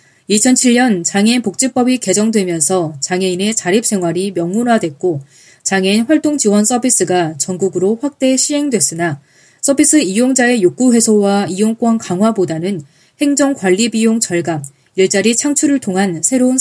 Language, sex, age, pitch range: Korean, female, 20-39, 180-245 Hz